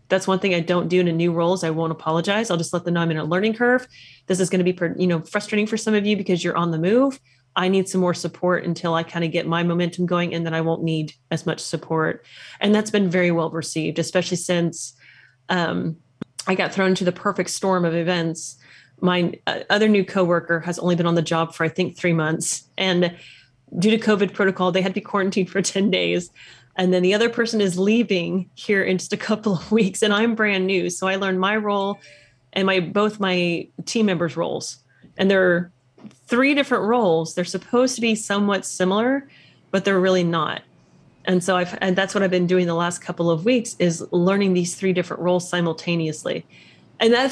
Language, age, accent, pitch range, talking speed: English, 30-49, American, 170-195 Hz, 220 wpm